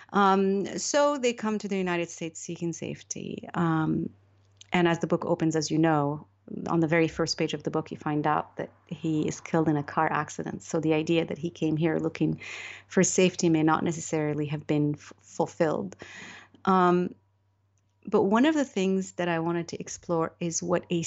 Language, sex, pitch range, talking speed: English, female, 160-185 Hz, 195 wpm